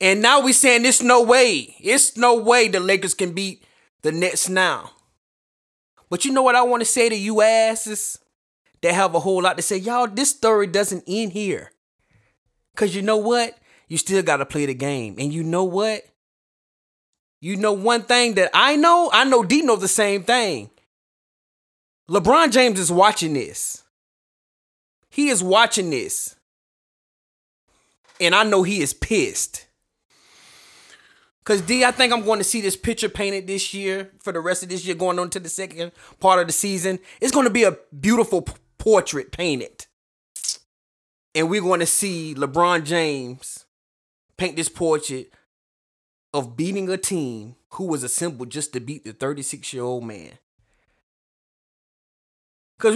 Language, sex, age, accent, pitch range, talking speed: English, male, 20-39, American, 165-230 Hz, 165 wpm